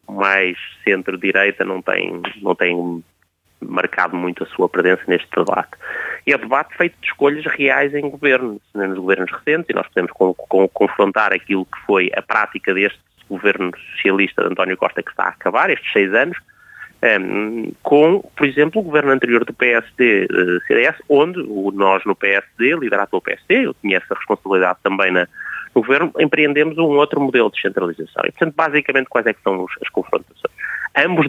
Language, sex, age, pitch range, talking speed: Portuguese, male, 30-49, 100-155 Hz, 170 wpm